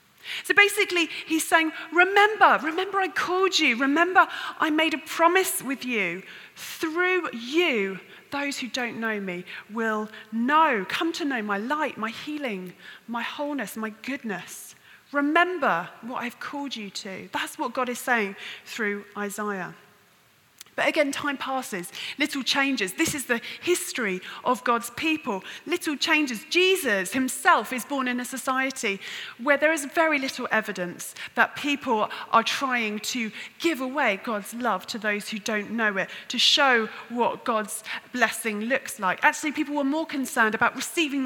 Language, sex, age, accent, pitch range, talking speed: English, female, 30-49, British, 215-295 Hz, 155 wpm